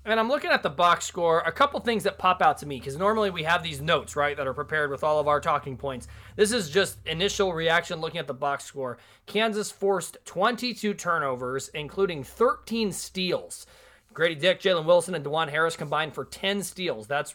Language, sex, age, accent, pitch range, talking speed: English, male, 30-49, American, 145-185 Hz, 210 wpm